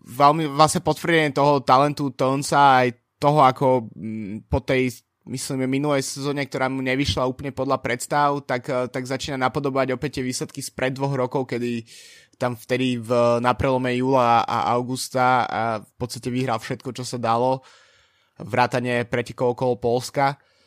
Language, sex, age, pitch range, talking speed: Slovak, male, 20-39, 120-140 Hz, 150 wpm